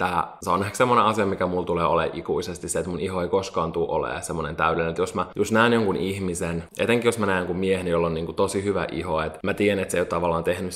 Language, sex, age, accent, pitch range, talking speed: Finnish, male, 20-39, native, 90-105 Hz, 275 wpm